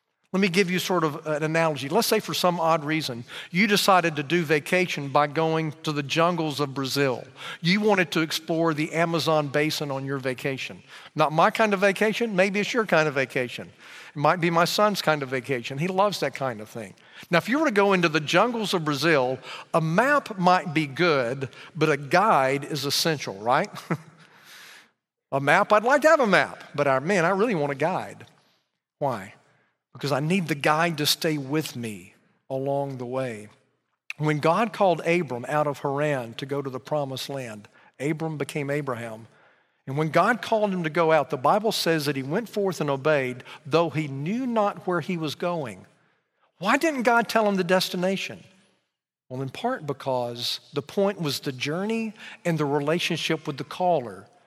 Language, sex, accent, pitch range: English, male, American, 140-185 Hz